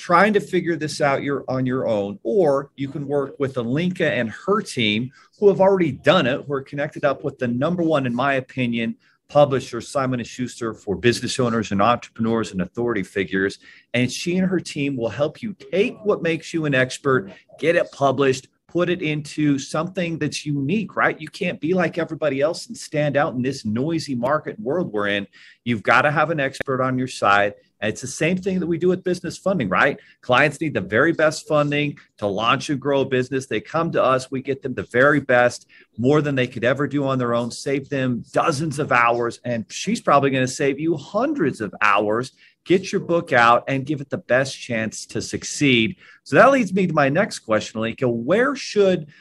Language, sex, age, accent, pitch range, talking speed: English, male, 40-59, American, 120-160 Hz, 210 wpm